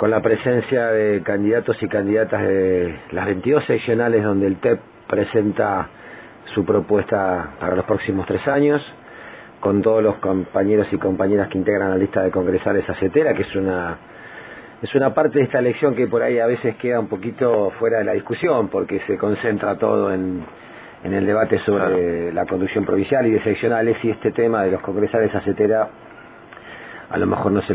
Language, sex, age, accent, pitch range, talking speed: English, male, 40-59, Argentinian, 95-115 Hz, 180 wpm